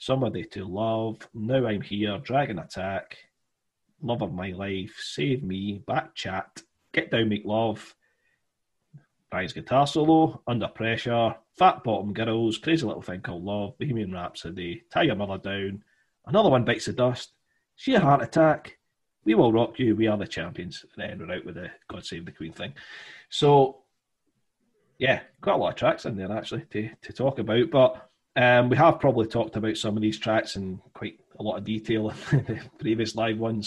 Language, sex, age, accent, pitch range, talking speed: English, male, 30-49, British, 100-130 Hz, 180 wpm